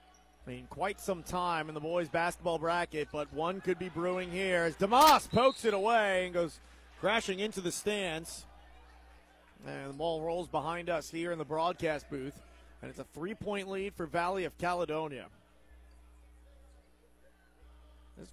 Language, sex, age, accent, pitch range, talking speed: English, male, 30-49, American, 125-195 Hz, 155 wpm